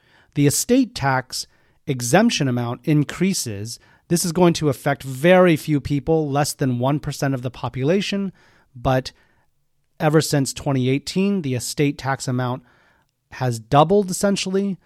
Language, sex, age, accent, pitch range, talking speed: English, male, 30-49, American, 125-160 Hz, 125 wpm